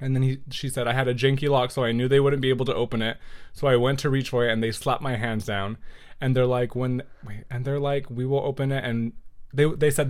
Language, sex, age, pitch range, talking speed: English, male, 20-39, 110-135 Hz, 285 wpm